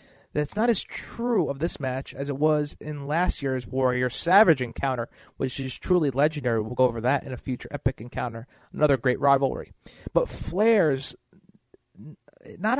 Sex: male